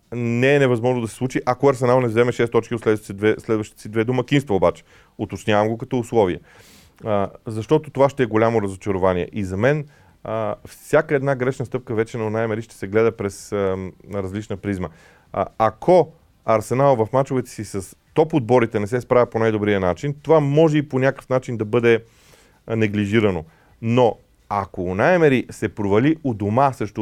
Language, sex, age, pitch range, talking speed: Bulgarian, male, 30-49, 100-130 Hz, 175 wpm